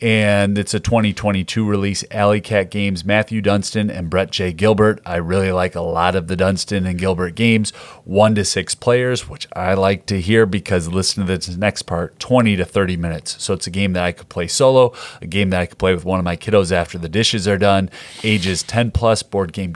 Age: 30-49